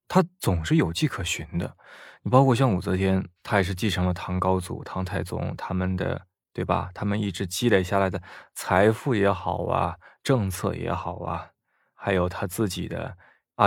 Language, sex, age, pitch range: Chinese, male, 20-39, 90-150 Hz